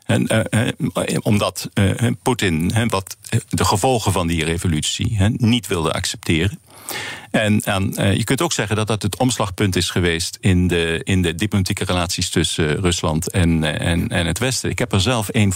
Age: 50-69